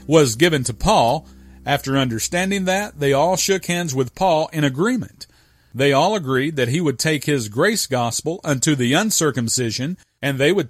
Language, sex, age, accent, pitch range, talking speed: English, male, 40-59, American, 120-165 Hz, 175 wpm